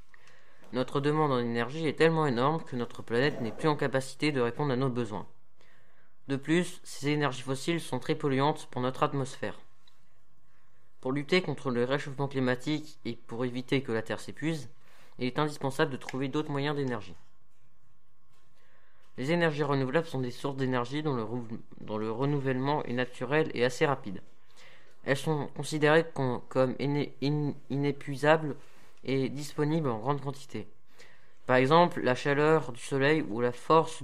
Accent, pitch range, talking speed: French, 125-150 Hz, 150 wpm